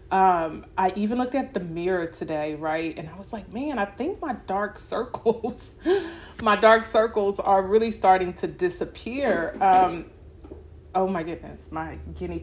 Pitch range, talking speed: 170-205 Hz, 160 wpm